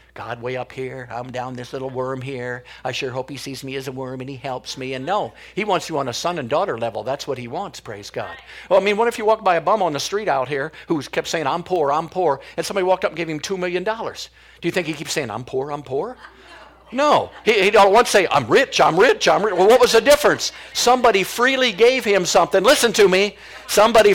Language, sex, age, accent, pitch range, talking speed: English, male, 50-69, American, 160-230 Hz, 270 wpm